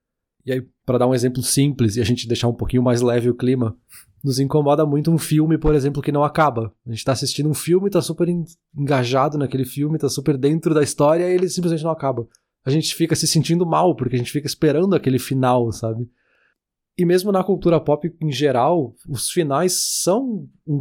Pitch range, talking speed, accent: 125-150 Hz, 215 wpm, Brazilian